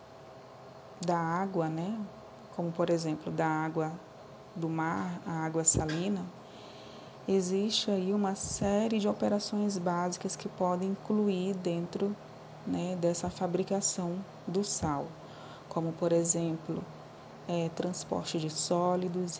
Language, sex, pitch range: Portuguese, female, 170-195 Hz